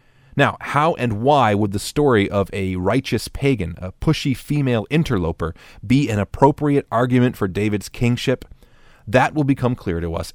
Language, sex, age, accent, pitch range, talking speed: English, male, 40-59, American, 95-135 Hz, 160 wpm